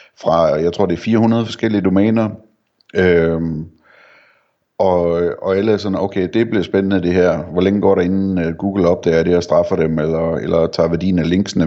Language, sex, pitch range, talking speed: Danish, male, 85-95 Hz, 200 wpm